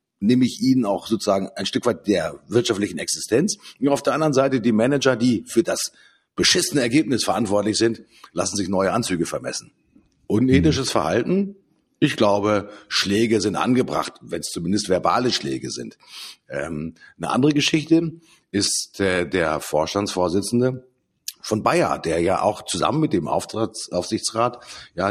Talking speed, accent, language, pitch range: 140 wpm, German, German, 100-140 Hz